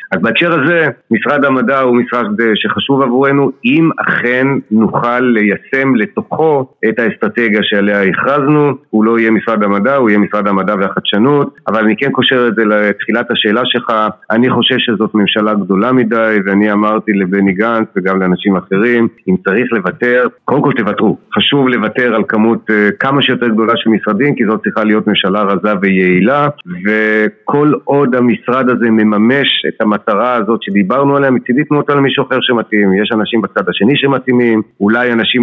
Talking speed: 160 wpm